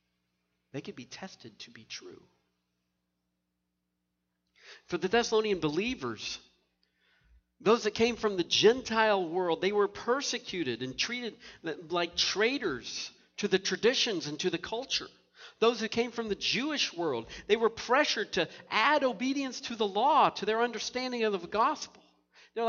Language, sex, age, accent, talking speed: English, male, 50-69, American, 145 wpm